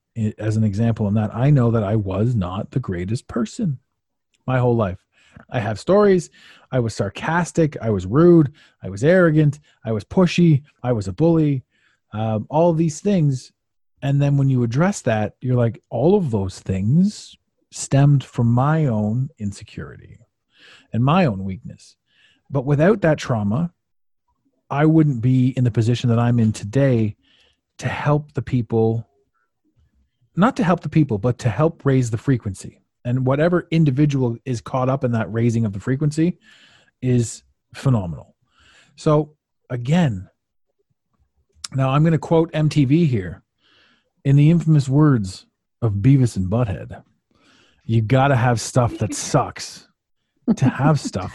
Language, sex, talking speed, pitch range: English, male, 155 wpm, 115-155 Hz